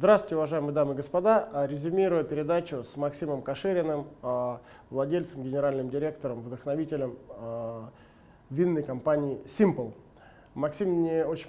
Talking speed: 105 wpm